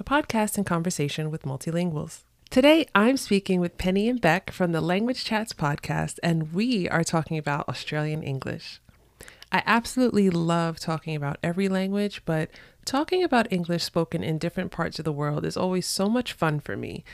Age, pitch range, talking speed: 30-49, 160-200 Hz, 175 wpm